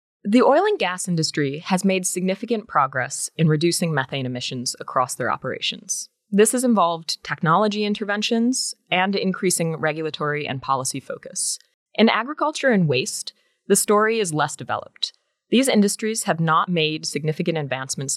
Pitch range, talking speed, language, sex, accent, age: 150-205 Hz, 140 wpm, English, female, American, 20-39